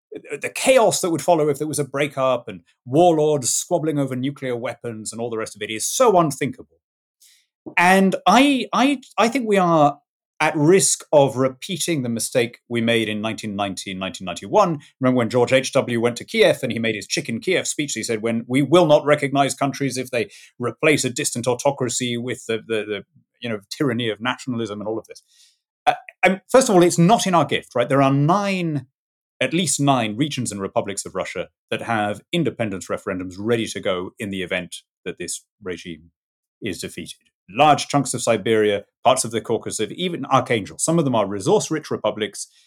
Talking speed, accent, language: 195 wpm, British, English